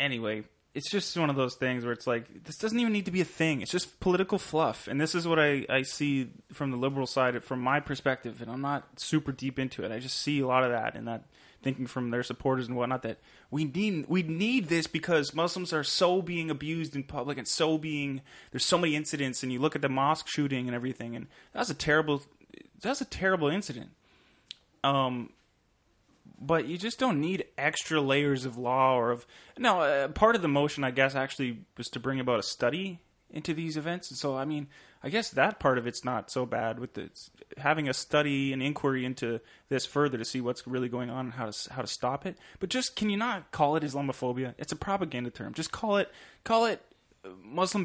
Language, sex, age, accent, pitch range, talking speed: English, male, 20-39, American, 130-160 Hz, 220 wpm